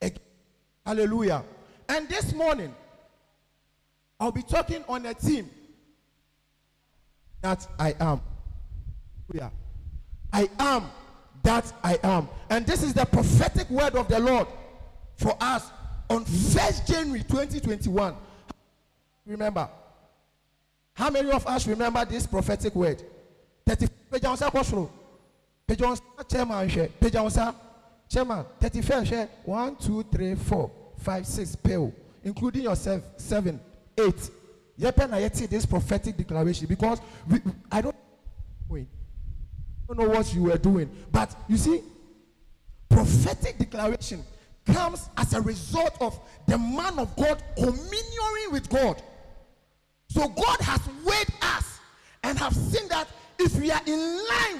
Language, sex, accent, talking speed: English, male, Nigerian, 110 wpm